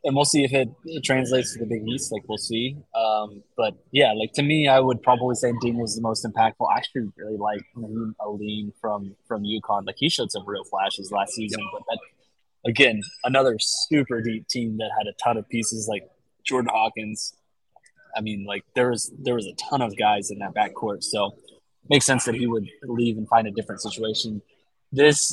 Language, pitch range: English, 110-135 Hz